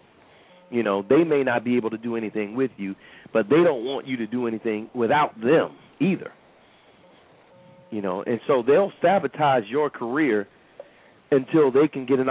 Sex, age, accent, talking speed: male, 40-59, American, 175 wpm